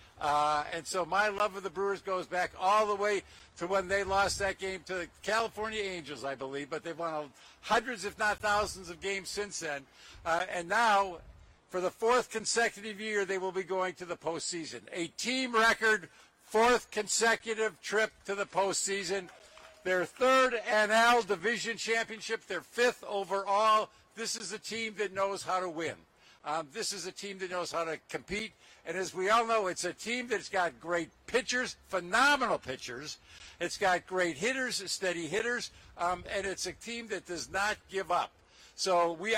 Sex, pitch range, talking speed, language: male, 180-220 Hz, 180 wpm, English